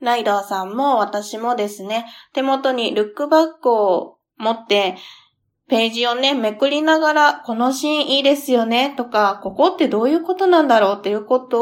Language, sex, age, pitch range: Japanese, female, 20-39, 220-280 Hz